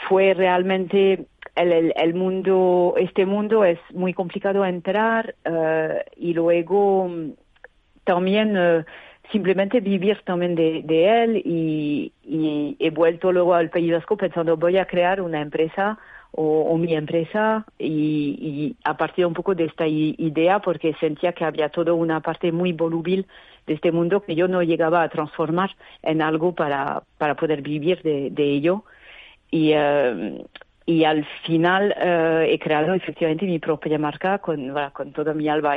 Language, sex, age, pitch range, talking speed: Spanish, female, 40-59, 155-180 Hz, 160 wpm